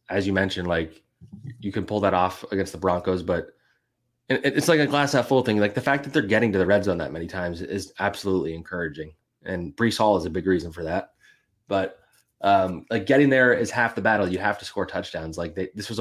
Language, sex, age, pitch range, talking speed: English, male, 20-39, 90-110 Hz, 230 wpm